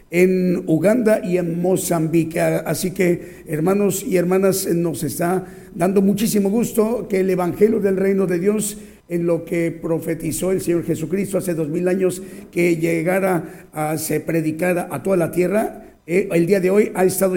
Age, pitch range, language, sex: 50-69, 175-205 Hz, Spanish, male